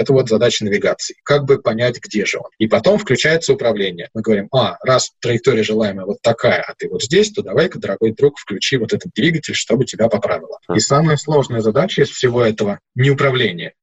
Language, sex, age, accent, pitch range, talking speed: Russian, male, 20-39, native, 110-145 Hz, 200 wpm